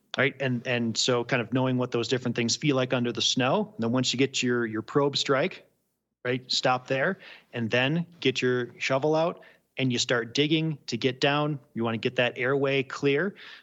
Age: 30-49